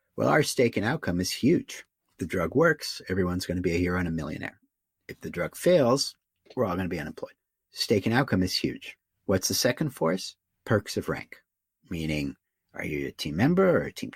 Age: 50-69